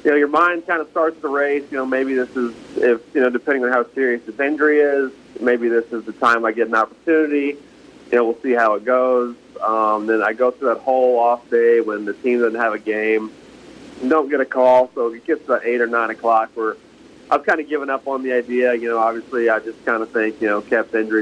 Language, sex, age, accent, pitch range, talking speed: English, male, 30-49, American, 110-130 Hz, 255 wpm